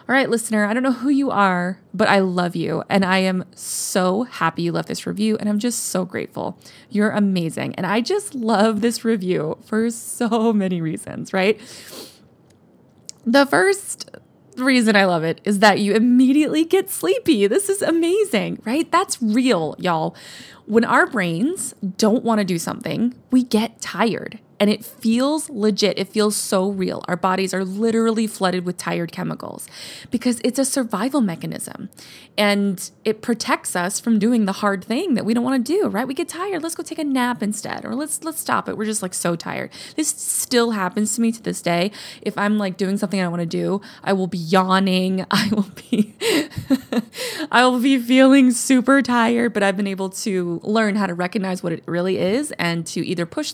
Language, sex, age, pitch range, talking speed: English, female, 20-39, 190-255 Hz, 190 wpm